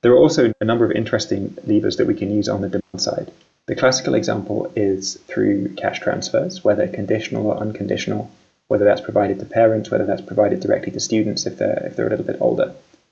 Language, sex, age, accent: English, male, 20-39, British